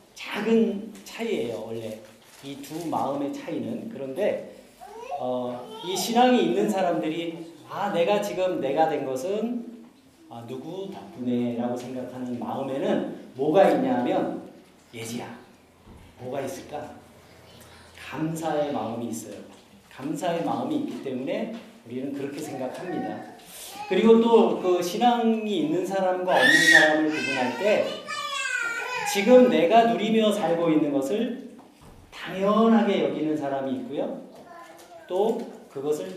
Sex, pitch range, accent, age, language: male, 140-225 Hz, native, 40-59, Korean